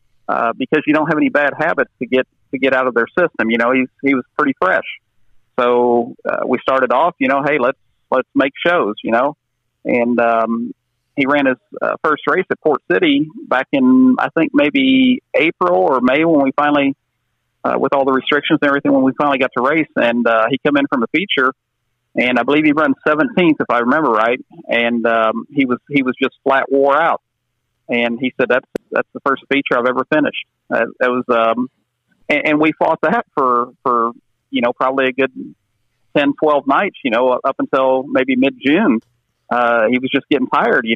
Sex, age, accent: male, 40-59, American